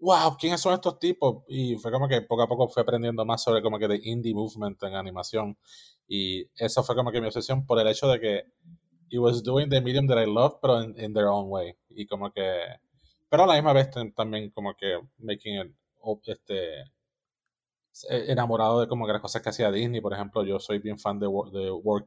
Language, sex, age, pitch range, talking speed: Spanish, male, 20-39, 105-125 Hz, 220 wpm